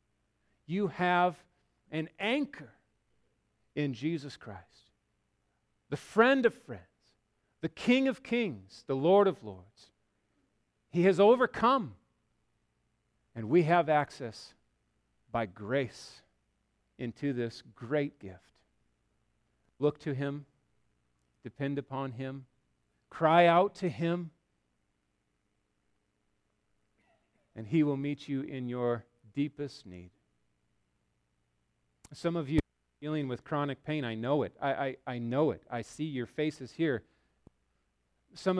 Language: English